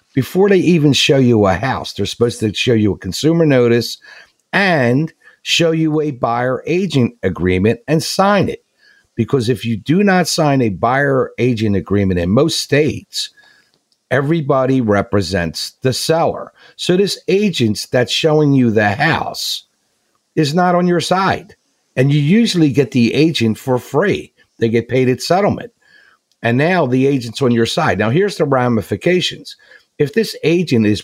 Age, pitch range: 50-69, 110-160 Hz